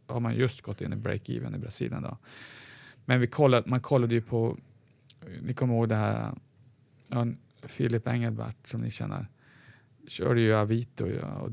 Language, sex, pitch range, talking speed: Swedish, male, 110-130 Hz, 160 wpm